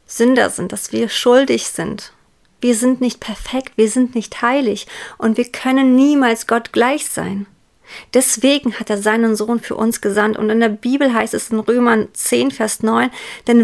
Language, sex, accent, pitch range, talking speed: German, female, German, 215-250 Hz, 180 wpm